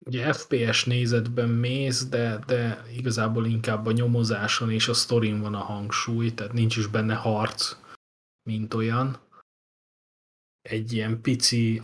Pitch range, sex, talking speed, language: 105-120 Hz, male, 130 wpm, Hungarian